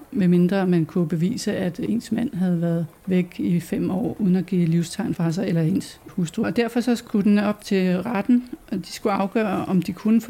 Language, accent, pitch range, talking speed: Danish, native, 185-230 Hz, 220 wpm